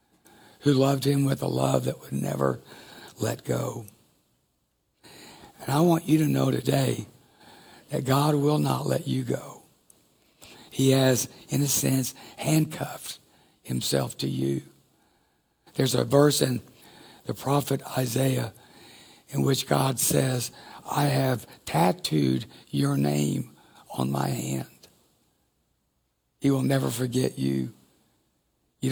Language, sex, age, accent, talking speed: English, male, 60-79, American, 120 wpm